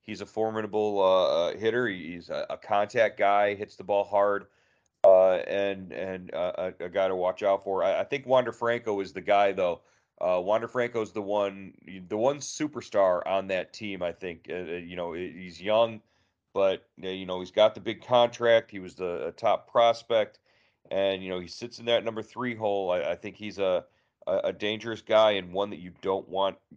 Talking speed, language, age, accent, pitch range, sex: 200 wpm, English, 40-59, American, 95-115 Hz, male